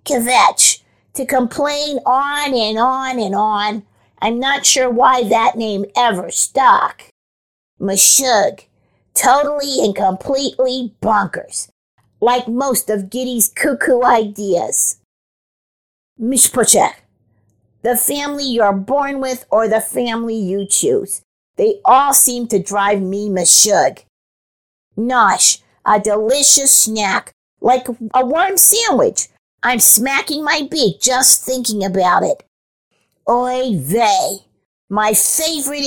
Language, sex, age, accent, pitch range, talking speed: English, female, 50-69, American, 205-265 Hz, 110 wpm